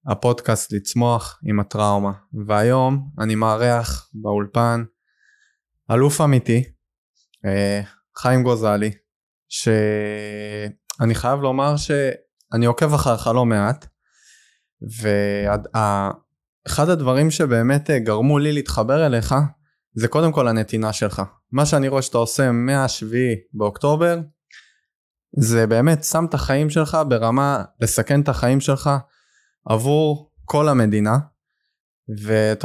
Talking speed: 100 wpm